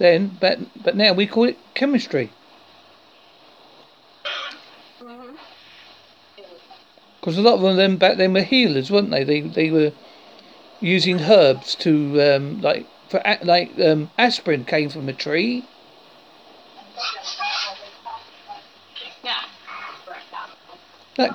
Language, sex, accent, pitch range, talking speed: English, male, British, 160-245 Hz, 100 wpm